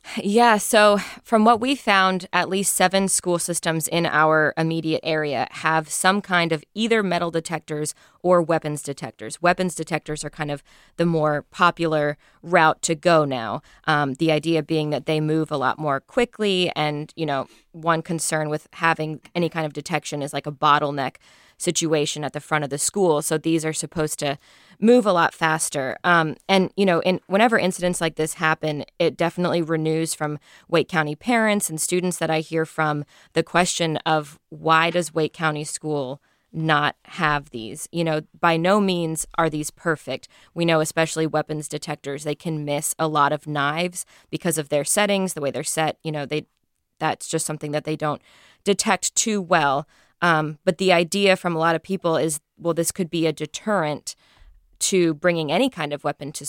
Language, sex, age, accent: English, female, 20-39, American